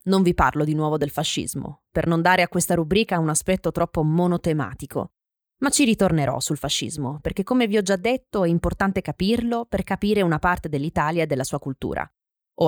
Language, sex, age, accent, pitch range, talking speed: Italian, female, 20-39, native, 150-205 Hz, 195 wpm